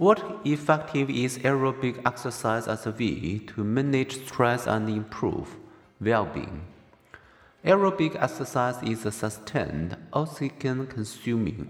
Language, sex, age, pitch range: Chinese, male, 50-69, 110-140 Hz